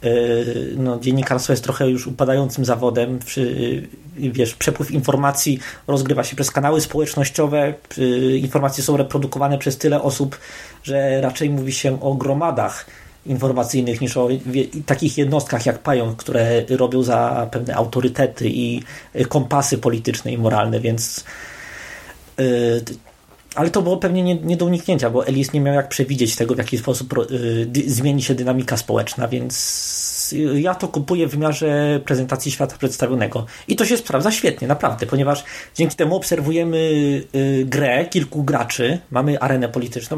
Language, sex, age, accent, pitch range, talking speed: Polish, male, 20-39, native, 125-145 Hz, 145 wpm